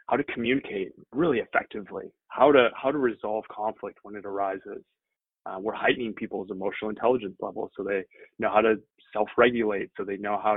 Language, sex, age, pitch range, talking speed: English, male, 20-39, 105-115 Hz, 175 wpm